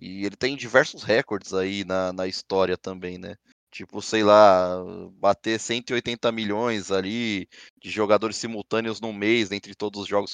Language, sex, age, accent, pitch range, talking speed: Portuguese, male, 20-39, Brazilian, 100-120 Hz, 155 wpm